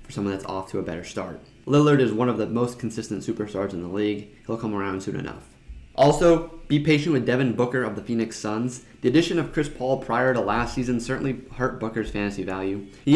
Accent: American